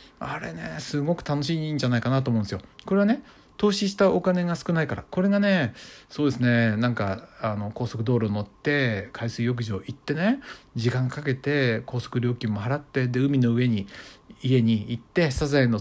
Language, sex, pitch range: Japanese, male, 110-165 Hz